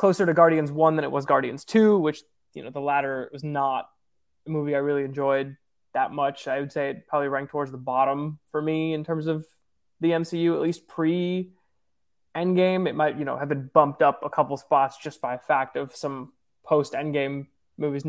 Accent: American